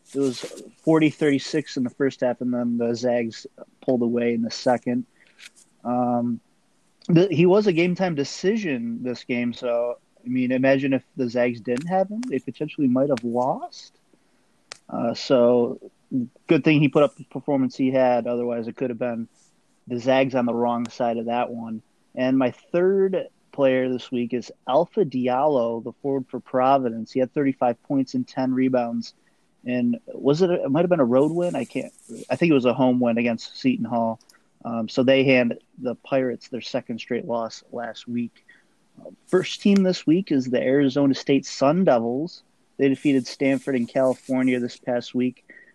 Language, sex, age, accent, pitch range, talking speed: English, male, 30-49, American, 120-150 Hz, 180 wpm